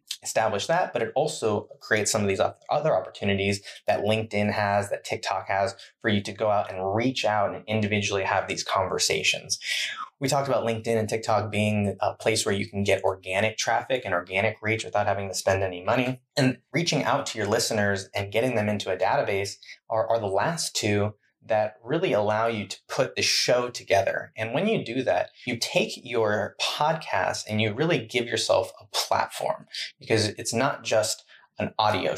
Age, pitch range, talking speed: 20-39, 100-115 Hz, 190 wpm